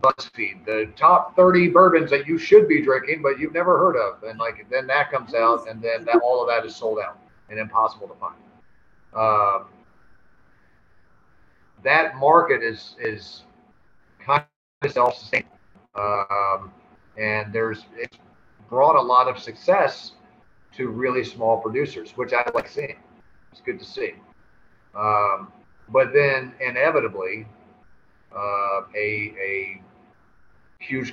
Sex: male